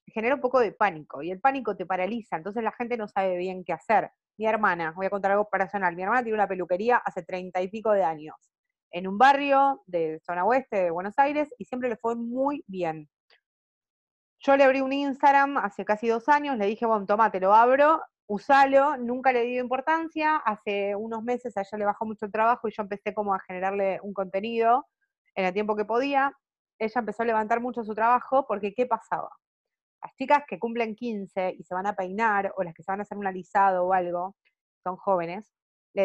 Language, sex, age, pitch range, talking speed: Spanish, female, 20-39, 190-255 Hz, 215 wpm